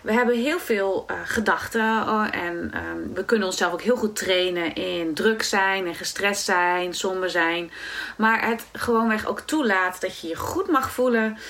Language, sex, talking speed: Dutch, female, 185 wpm